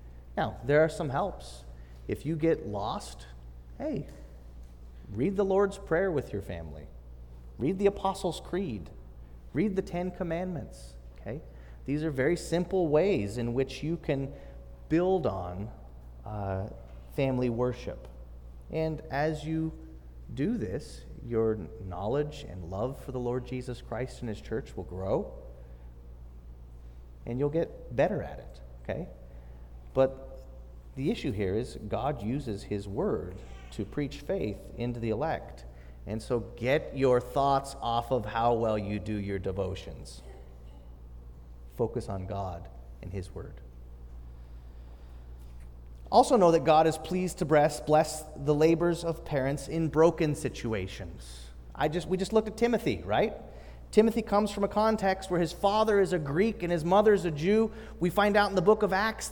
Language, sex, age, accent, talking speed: English, male, 30-49, American, 150 wpm